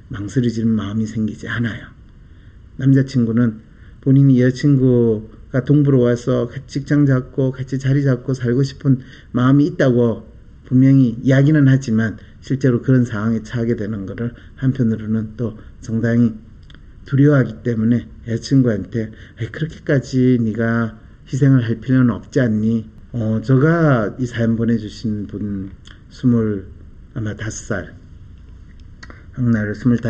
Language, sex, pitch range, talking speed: English, male, 100-130 Hz, 110 wpm